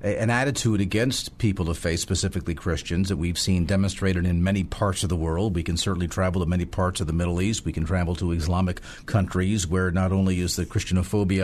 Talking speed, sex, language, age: 215 wpm, male, English, 50-69